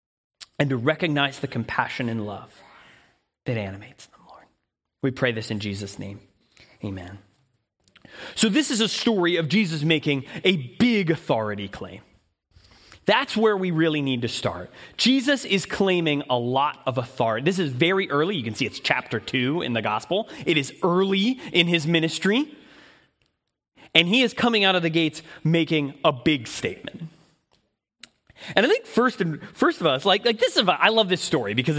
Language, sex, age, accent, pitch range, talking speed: English, male, 30-49, American, 135-215 Hz, 175 wpm